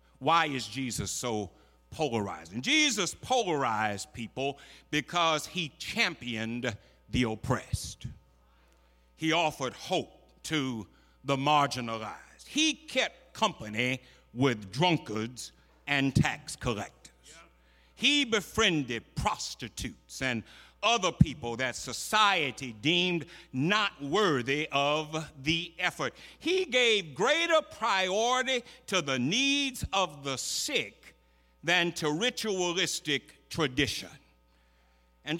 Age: 60-79